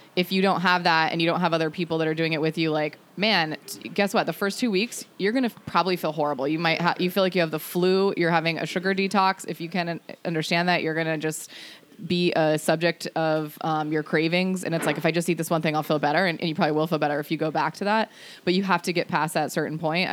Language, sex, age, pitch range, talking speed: English, female, 20-39, 155-175 Hz, 295 wpm